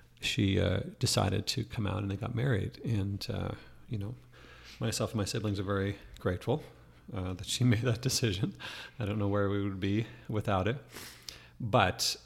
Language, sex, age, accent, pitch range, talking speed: English, male, 40-59, American, 95-115 Hz, 180 wpm